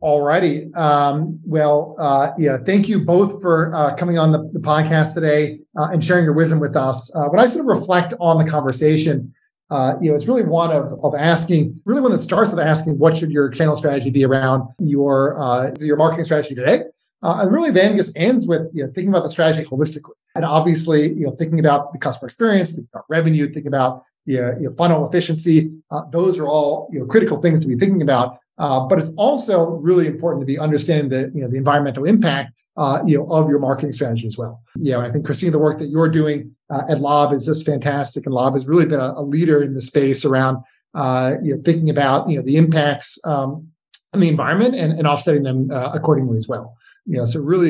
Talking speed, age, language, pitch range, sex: 230 wpm, 30-49, English, 140-165 Hz, male